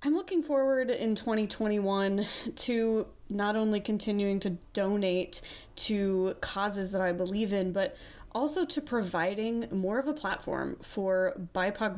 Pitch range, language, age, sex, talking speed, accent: 170-210 Hz, English, 20-39, female, 135 wpm, American